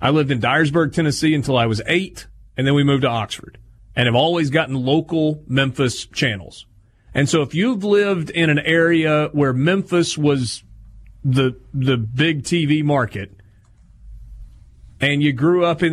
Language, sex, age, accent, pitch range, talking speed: English, male, 30-49, American, 120-170 Hz, 160 wpm